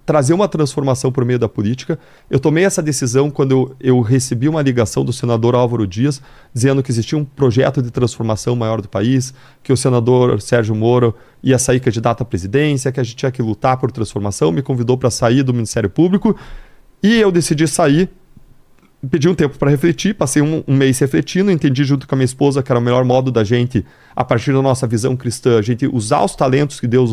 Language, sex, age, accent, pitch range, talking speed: Portuguese, male, 40-59, Brazilian, 120-150 Hz, 210 wpm